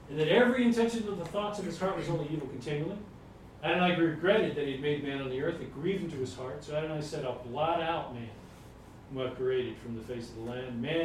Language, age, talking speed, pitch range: English, 40-59, 245 wpm, 120-165 Hz